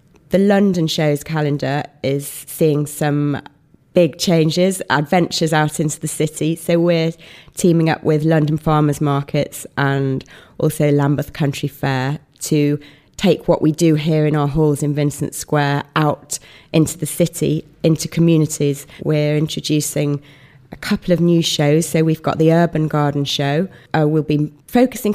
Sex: female